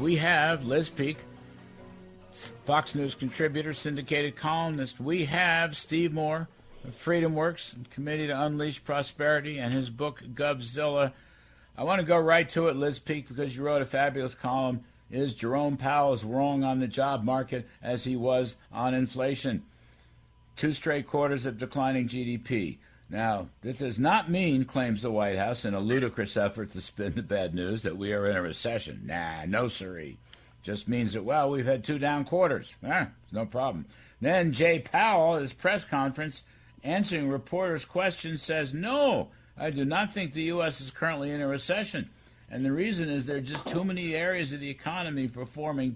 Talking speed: 175 wpm